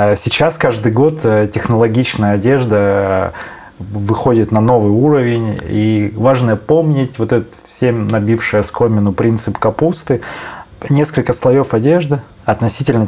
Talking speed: 105 wpm